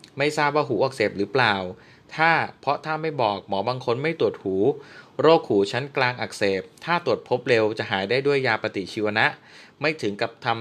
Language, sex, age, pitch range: Thai, male, 20-39, 110-150 Hz